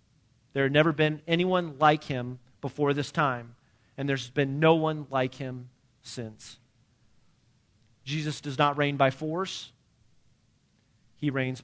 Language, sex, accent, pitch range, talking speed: English, male, American, 120-155 Hz, 135 wpm